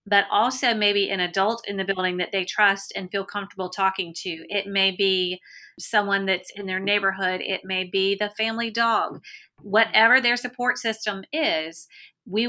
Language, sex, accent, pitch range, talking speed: English, female, American, 185-210 Hz, 175 wpm